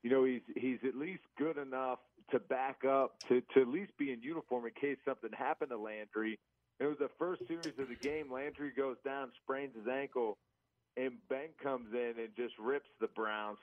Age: 40-59